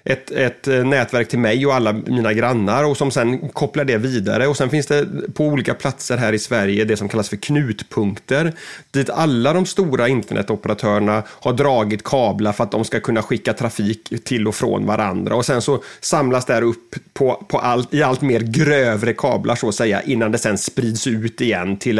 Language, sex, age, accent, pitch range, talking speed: Swedish, male, 30-49, native, 115-150 Hz, 200 wpm